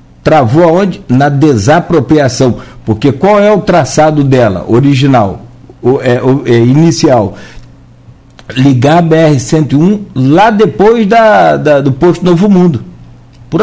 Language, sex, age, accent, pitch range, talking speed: Portuguese, male, 60-79, Brazilian, 130-200 Hz, 125 wpm